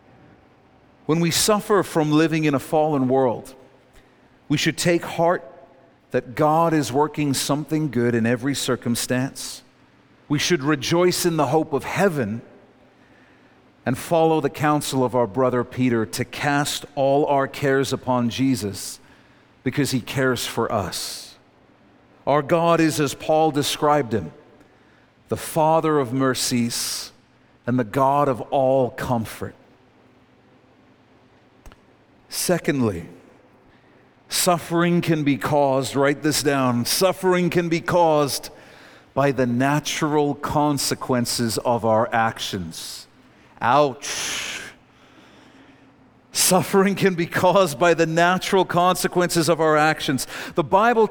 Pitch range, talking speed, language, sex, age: 130-175 Hz, 115 wpm, English, male, 40-59